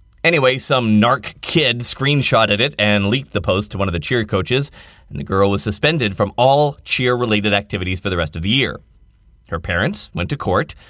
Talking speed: 200 wpm